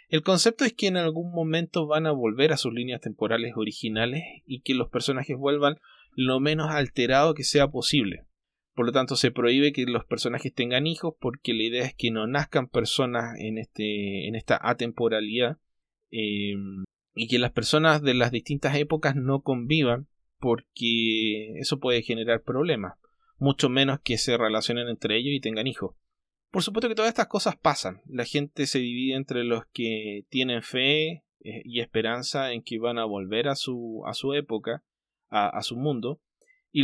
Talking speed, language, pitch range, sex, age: 175 wpm, Spanish, 120-150 Hz, male, 20-39